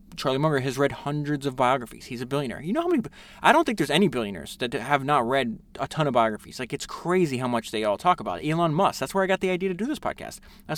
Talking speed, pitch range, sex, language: 285 wpm, 120-175 Hz, male, English